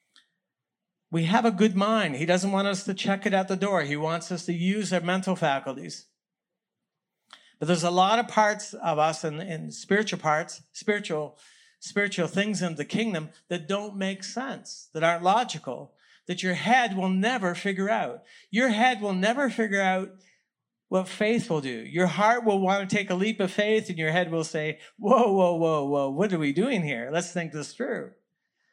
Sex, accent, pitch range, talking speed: male, American, 155-200 Hz, 190 wpm